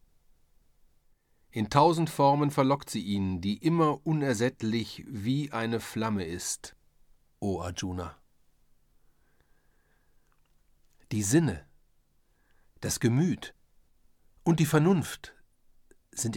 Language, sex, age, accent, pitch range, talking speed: German, male, 50-69, German, 80-130 Hz, 90 wpm